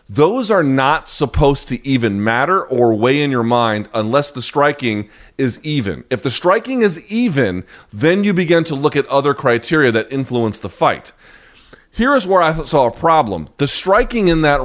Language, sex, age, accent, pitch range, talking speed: English, male, 30-49, American, 120-150 Hz, 185 wpm